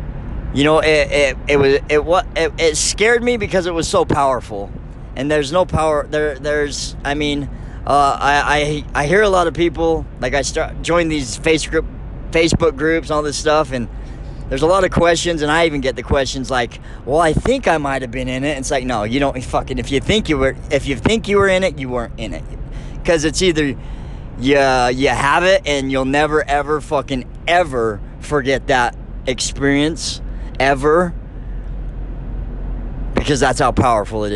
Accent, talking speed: American, 195 wpm